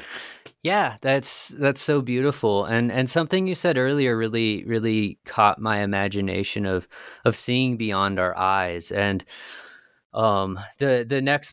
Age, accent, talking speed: 20-39, American, 140 wpm